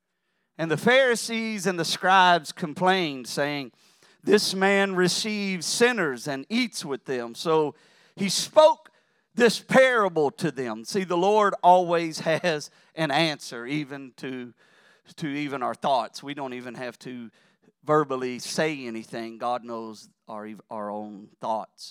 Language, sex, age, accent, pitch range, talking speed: English, male, 40-59, American, 160-235 Hz, 135 wpm